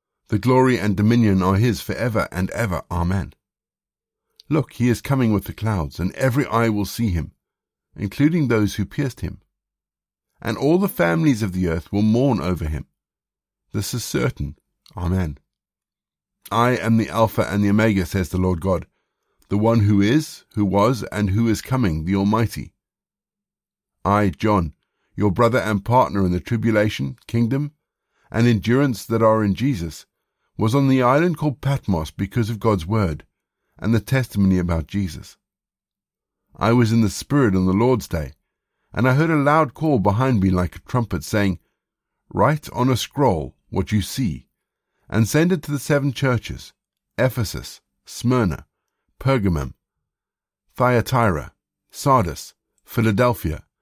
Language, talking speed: English, 155 wpm